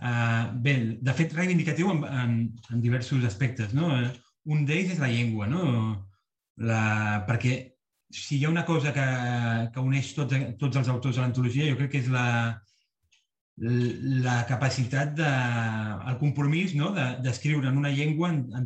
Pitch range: 120-145 Hz